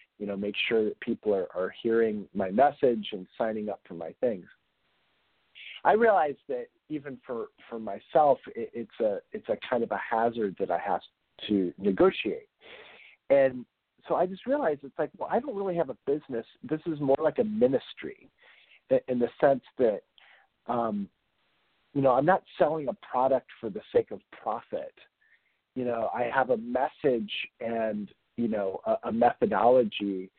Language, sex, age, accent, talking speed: English, male, 50-69, American, 170 wpm